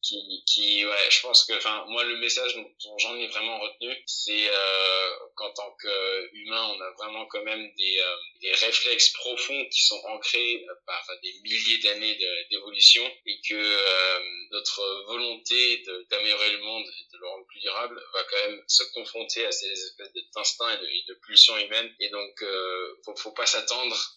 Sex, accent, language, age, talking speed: male, French, French, 20-39, 190 wpm